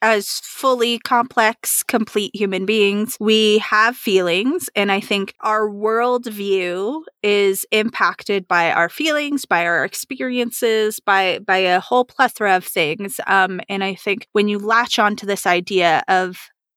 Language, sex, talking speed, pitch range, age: English, female, 145 wpm, 190-225 Hz, 20-39